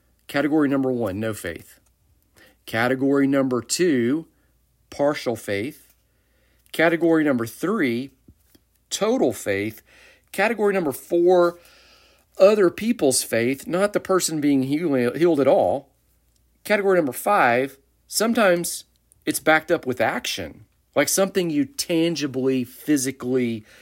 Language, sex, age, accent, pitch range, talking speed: English, male, 40-59, American, 105-140 Hz, 105 wpm